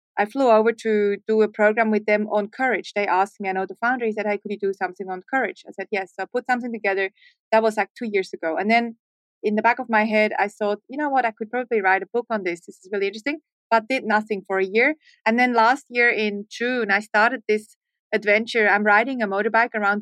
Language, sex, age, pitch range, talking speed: English, female, 30-49, 205-230 Hz, 260 wpm